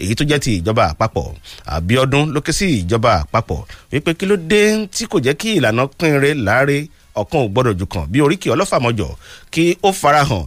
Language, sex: English, male